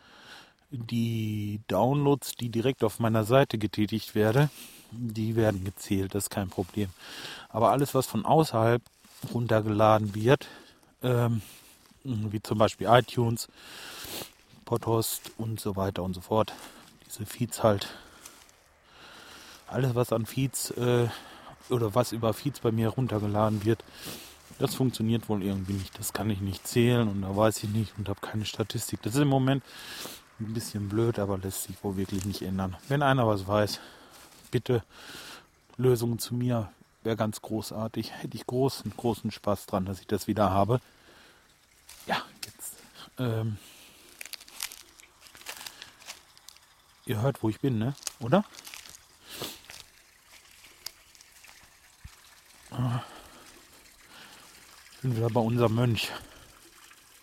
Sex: male